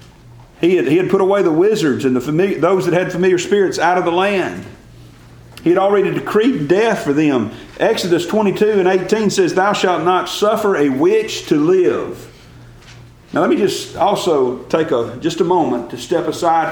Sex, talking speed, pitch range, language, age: male, 190 wpm, 120-170 Hz, English, 40-59